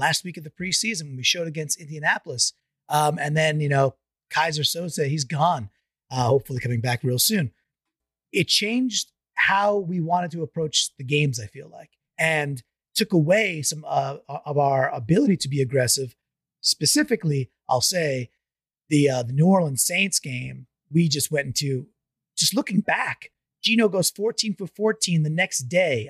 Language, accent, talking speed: English, American, 170 wpm